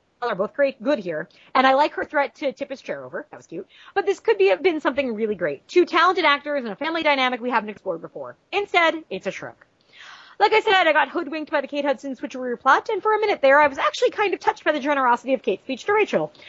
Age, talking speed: 30-49, 265 wpm